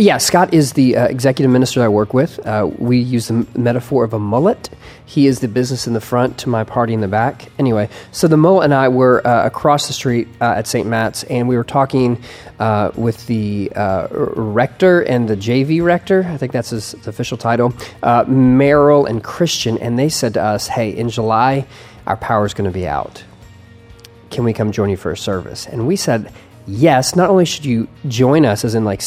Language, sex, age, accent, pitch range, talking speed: English, male, 30-49, American, 110-135 Hz, 220 wpm